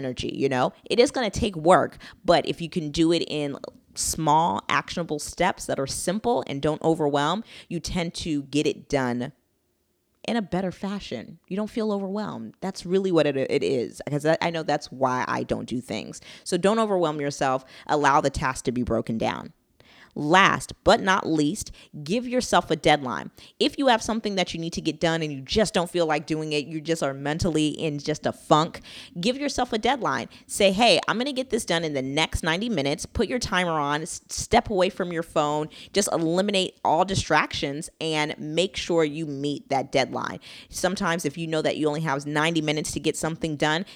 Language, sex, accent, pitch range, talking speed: English, female, American, 150-190 Hz, 200 wpm